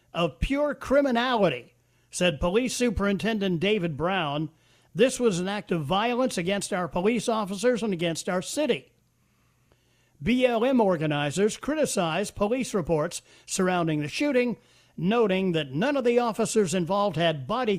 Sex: male